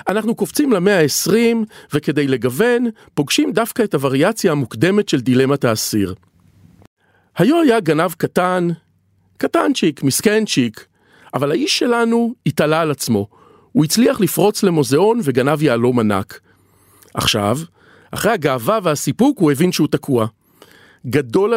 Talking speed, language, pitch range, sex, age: 115 wpm, Hebrew, 130-200 Hz, male, 40-59